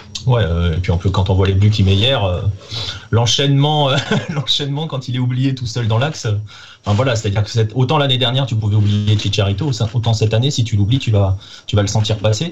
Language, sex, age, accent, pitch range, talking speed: French, male, 30-49, French, 105-130 Hz, 245 wpm